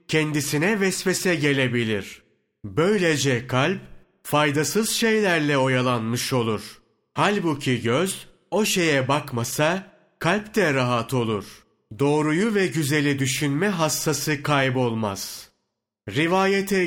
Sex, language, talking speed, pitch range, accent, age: male, Turkish, 90 wpm, 125-175 Hz, native, 30-49